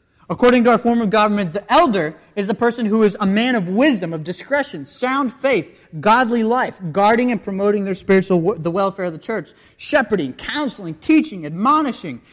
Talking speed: 185 wpm